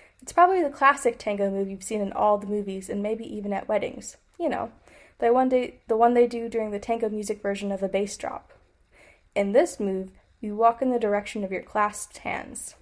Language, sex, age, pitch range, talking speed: English, female, 20-39, 200-245 Hz, 220 wpm